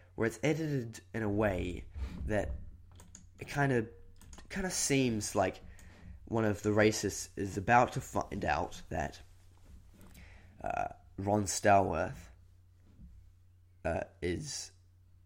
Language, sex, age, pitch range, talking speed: English, male, 10-29, 90-105 Hz, 115 wpm